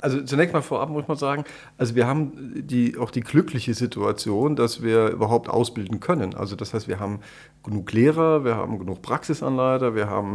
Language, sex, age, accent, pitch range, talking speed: German, male, 50-69, German, 110-140 Hz, 185 wpm